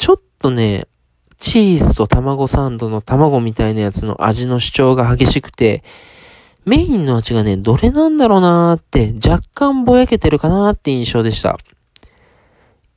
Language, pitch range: Japanese, 120-180 Hz